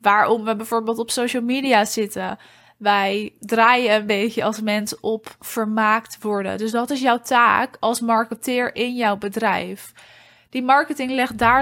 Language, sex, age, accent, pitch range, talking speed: Dutch, female, 20-39, Dutch, 210-245 Hz, 155 wpm